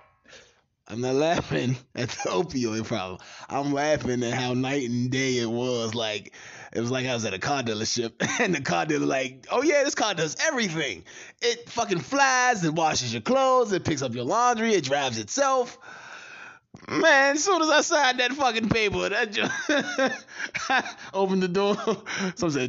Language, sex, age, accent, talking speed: English, male, 20-39, American, 180 wpm